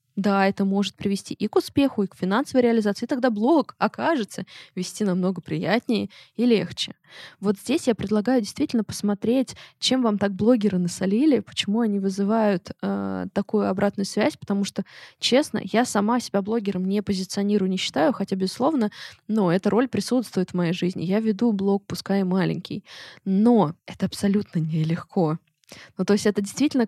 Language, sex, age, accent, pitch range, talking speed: Russian, female, 20-39, native, 195-235 Hz, 160 wpm